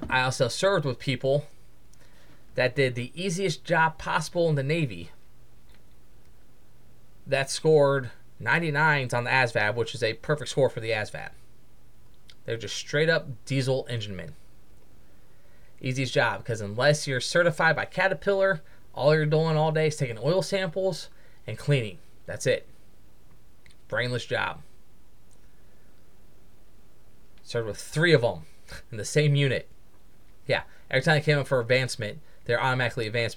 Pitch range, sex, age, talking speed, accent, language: 115-155 Hz, male, 20-39, 140 wpm, American, English